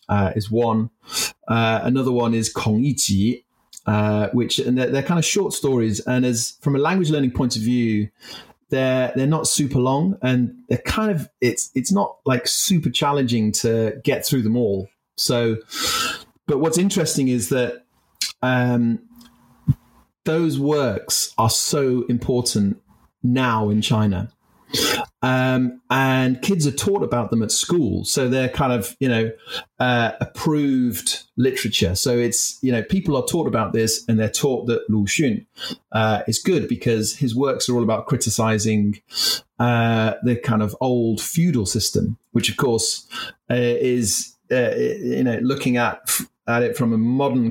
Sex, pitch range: male, 110-130 Hz